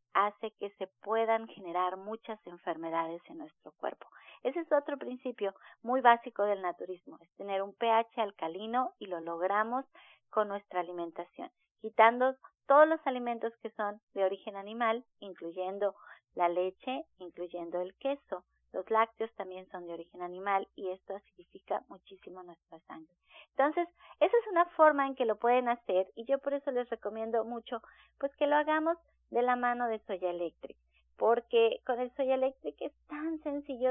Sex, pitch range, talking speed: female, 185-260 Hz, 165 wpm